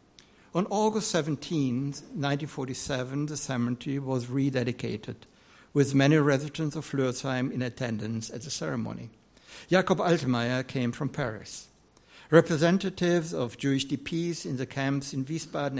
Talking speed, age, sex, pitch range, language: 120 wpm, 60-79, male, 125-155 Hz, English